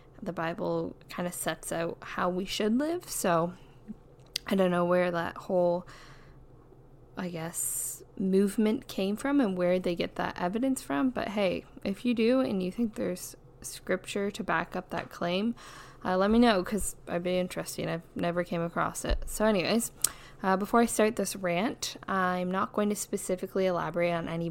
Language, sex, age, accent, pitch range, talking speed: English, female, 10-29, American, 175-215 Hz, 180 wpm